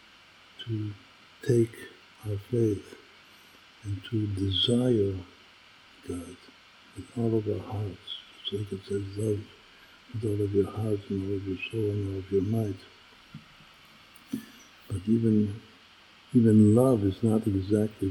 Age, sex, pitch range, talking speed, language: 60-79, male, 95-110 Hz, 135 wpm, Hebrew